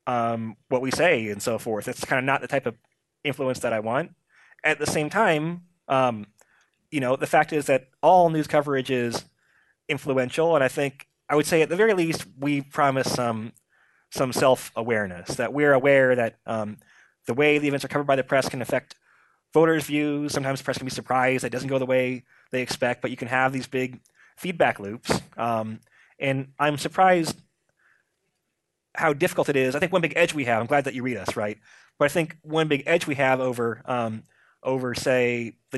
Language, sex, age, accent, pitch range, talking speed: English, male, 20-39, American, 125-150 Hz, 205 wpm